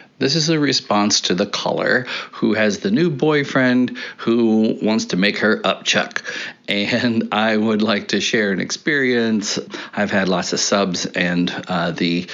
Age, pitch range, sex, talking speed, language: 40-59, 110-145 Hz, male, 165 wpm, English